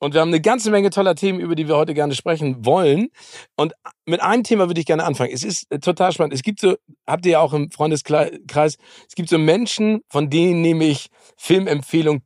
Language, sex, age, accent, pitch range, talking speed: German, male, 40-59, German, 135-170 Hz, 220 wpm